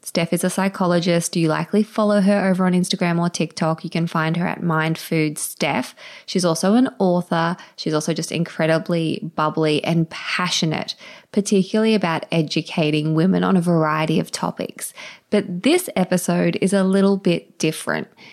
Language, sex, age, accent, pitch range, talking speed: English, female, 20-39, Australian, 165-200 Hz, 155 wpm